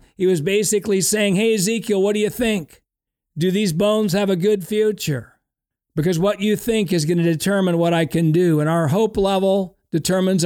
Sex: male